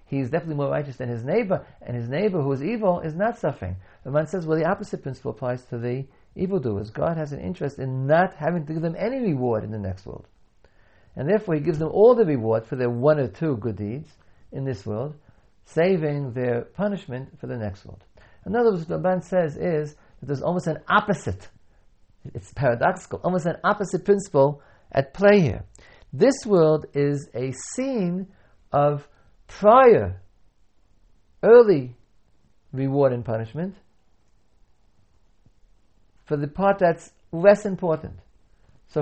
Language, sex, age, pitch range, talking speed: English, male, 50-69, 110-170 Hz, 165 wpm